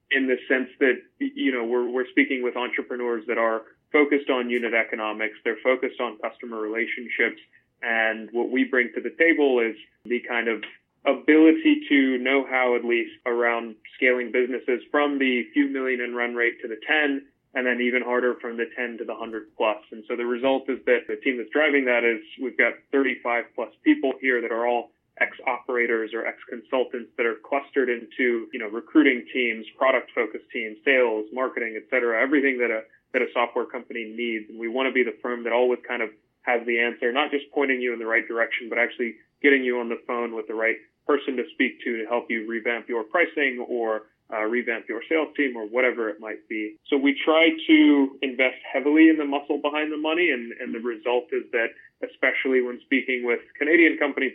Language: English